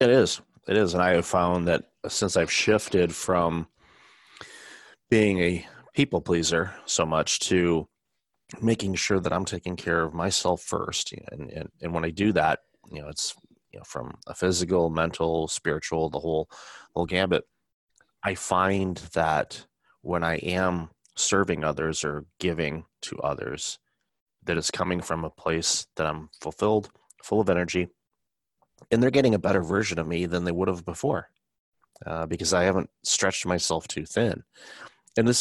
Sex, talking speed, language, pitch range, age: male, 165 wpm, English, 80-95 Hz, 30-49